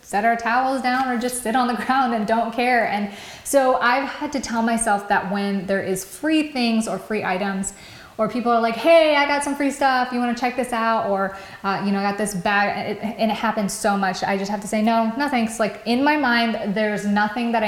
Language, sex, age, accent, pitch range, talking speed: English, female, 20-39, American, 195-245 Hz, 250 wpm